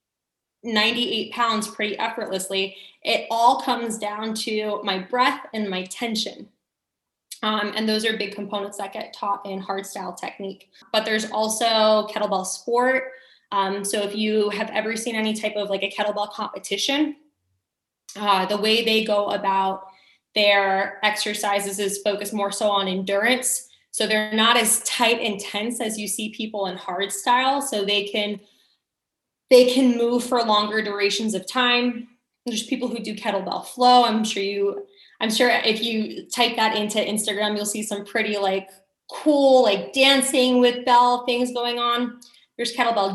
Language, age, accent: English, 10-29, American